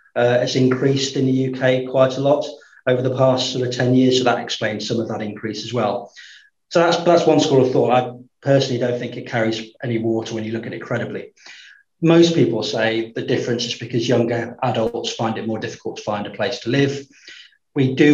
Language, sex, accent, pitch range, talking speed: English, male, British, 115-135 Hz, 220 wpm